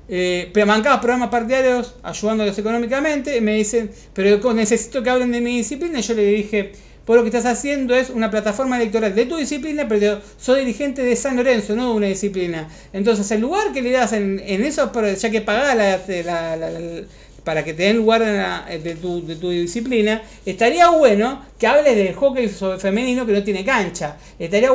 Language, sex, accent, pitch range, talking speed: Spanish, male, Argentinian, 200-260 Hz, 200 wpm